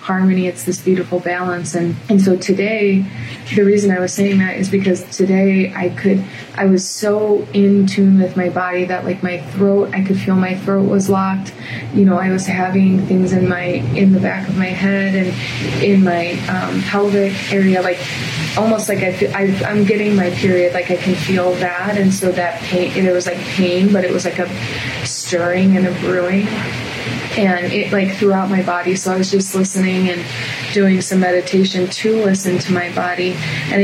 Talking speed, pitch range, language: 200 wpm, 180-195 Hz, English